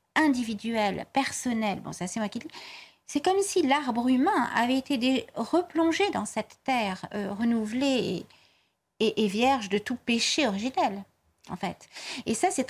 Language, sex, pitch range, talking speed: French, female, 215-295 Hz, 160 wpm